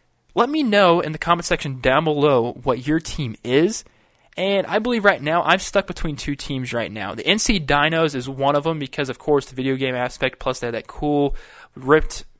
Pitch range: 125-155 Hz